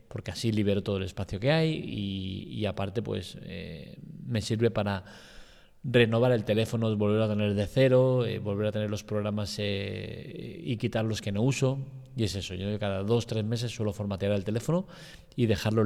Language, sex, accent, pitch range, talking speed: Spanish, male, Spanish, 100-120 Hz, 195 wpm